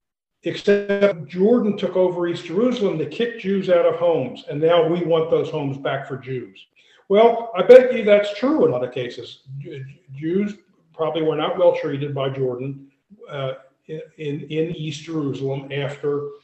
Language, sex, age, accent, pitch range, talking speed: English, male, 50-69, American, 140-200 Hz, 170 wpm